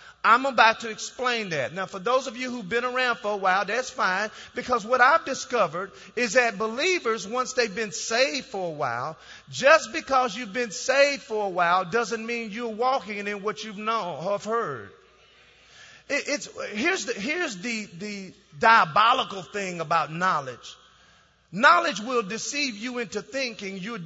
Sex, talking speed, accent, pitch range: male, 170 wpm, American, 200-250 Hz